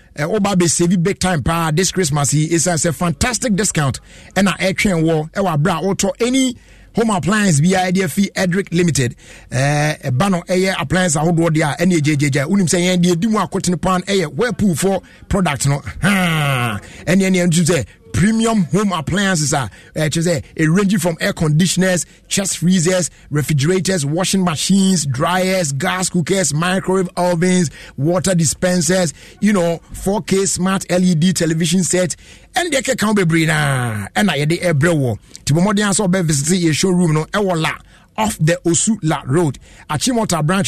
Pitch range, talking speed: 155-190 Hz, 160 wpm